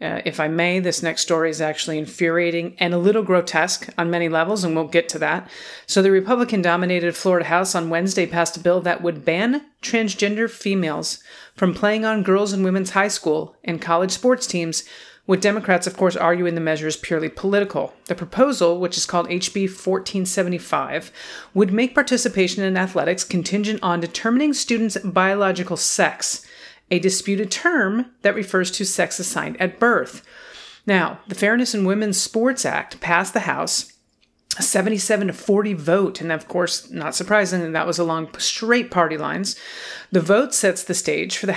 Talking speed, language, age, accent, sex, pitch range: 175 wpm, English, 40-59, American, female, 170-210 Hz